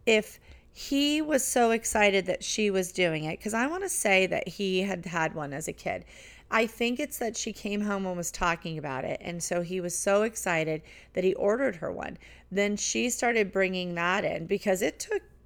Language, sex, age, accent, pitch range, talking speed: English, female, 40-59, American, 165-210 Hz, 215 wpm